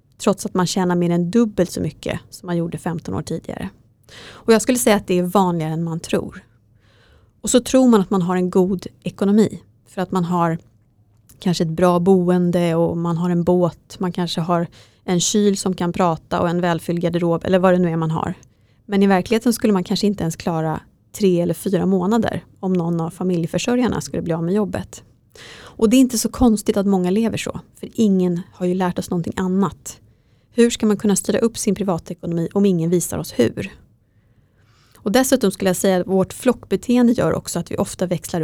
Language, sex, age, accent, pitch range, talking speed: English, female, 30-49, Swedish, 170-205 Hz, 210 wpm